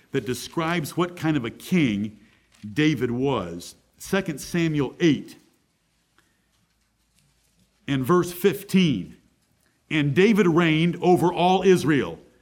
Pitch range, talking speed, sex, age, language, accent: 135-175 Hz, 100 wpm, male, 50-69, English, American